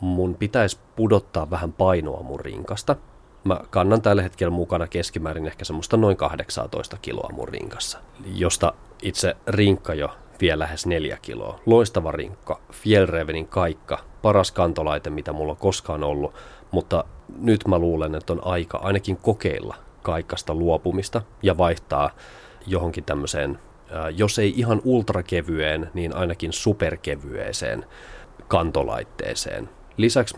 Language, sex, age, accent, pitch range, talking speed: Finnish, male, 30-49, native, 80-100 Hz, 125 wpm